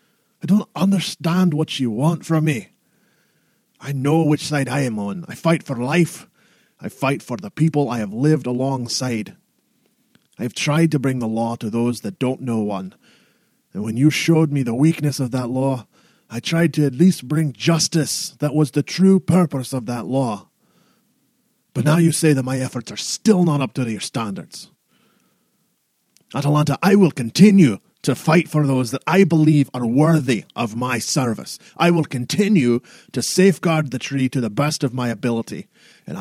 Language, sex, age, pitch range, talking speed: English, male, 30-49, 130-175 Hz, 180 wpm